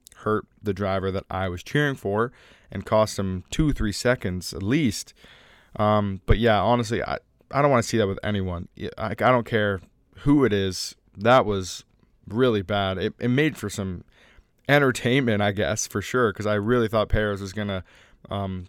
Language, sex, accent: English, male, American